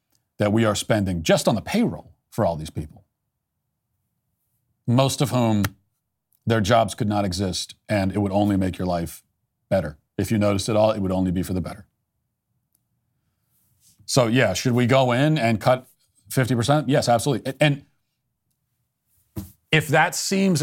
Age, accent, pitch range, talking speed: 40-59, American, 110-145 Hz, 160 wpm